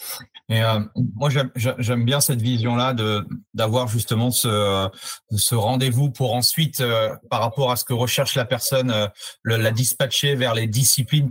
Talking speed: 170 wpm